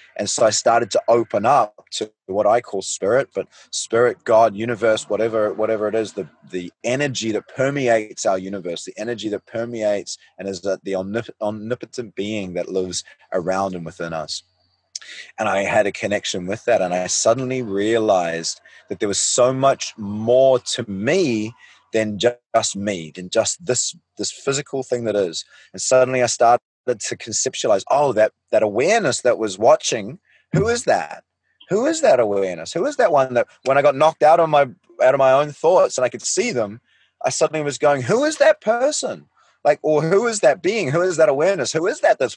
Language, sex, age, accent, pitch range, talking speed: English, male, 20-39, Australian, 105-140 Hz, 195 wpm